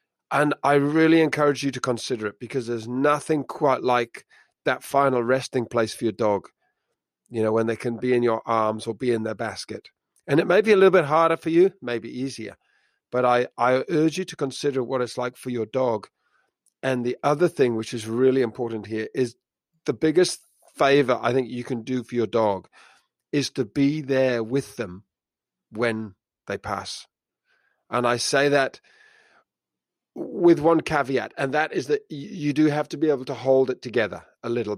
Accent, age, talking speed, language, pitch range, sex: British, 40-59, 195 wpm, English, 115-140 Hz, male